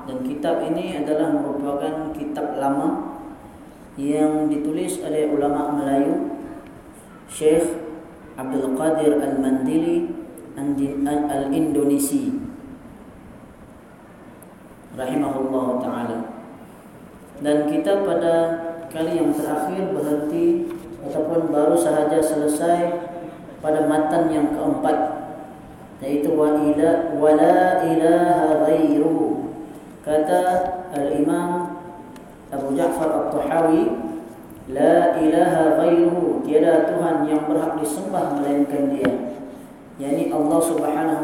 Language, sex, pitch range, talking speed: Malay, female, 150-170 Hz, 90 wpm